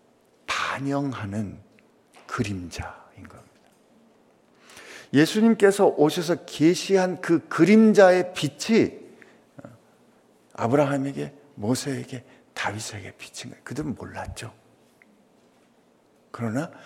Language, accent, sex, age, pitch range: Korean, native, male, 50-69, 100-140 Hz